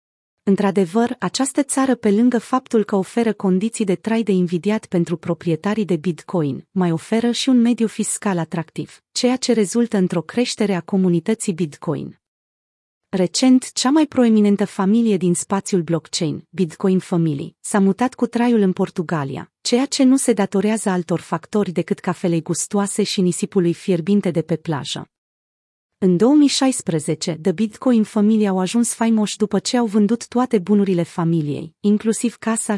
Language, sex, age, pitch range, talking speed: Romanian, female, 30-49, 175-225 Hz, 150 wpm